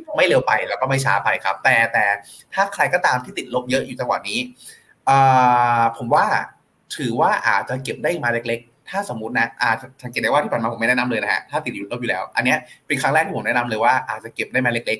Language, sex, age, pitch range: Thai, male, 20-39, 120-160 Hz